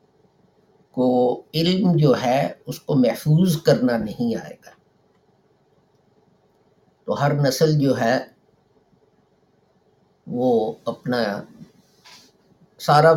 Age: 50-69